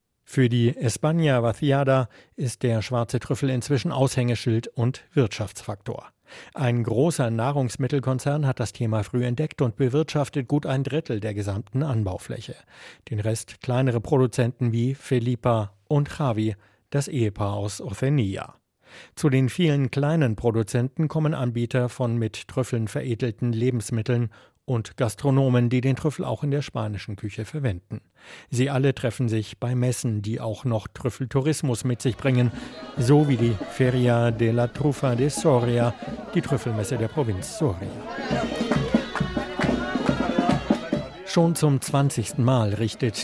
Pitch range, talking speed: 115-135 Hz, 130 wpm